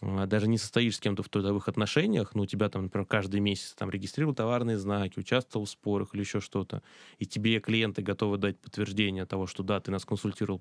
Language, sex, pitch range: Russian, male, 95-110 Hz